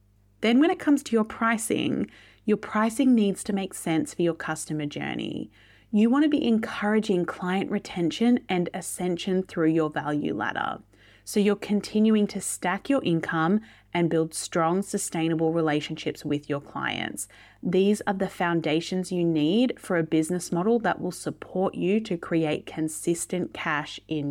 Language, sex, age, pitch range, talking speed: English, female, 30-49, 155-205 Hz, 160 wpm